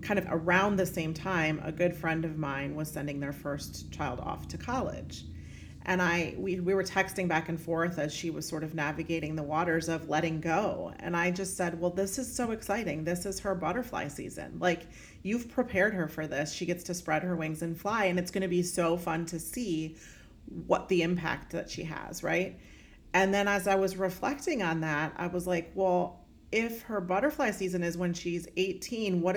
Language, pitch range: English, 160-200 Hz